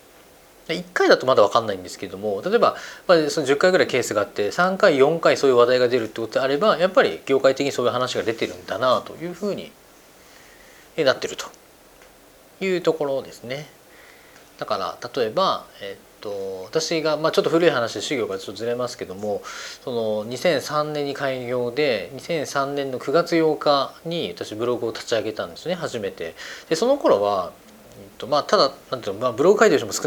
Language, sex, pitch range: Japanese, male, 125-200 Hz